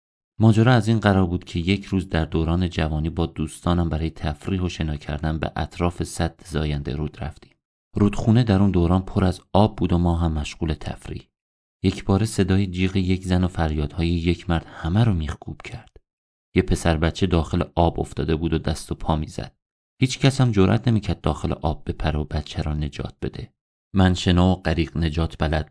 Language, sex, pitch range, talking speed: Persian, male, 80-95 Hz, 185 wpm